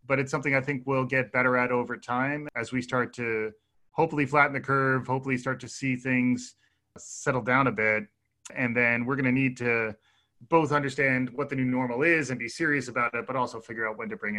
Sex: male